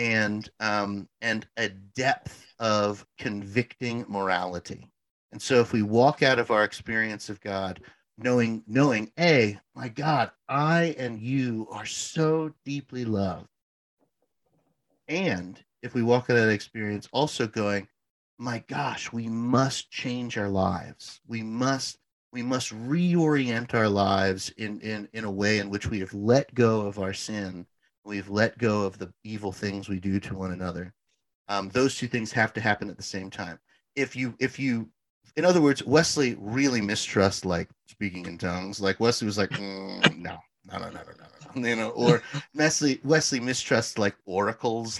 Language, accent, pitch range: English, American, 100-135 Hz